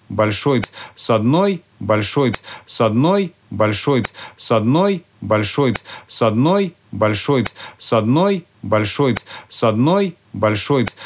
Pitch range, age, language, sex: 110-145 Hz, 50-69, Russian, male